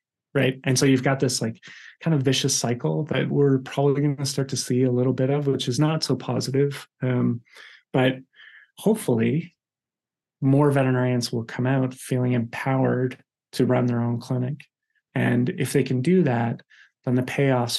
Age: 30-49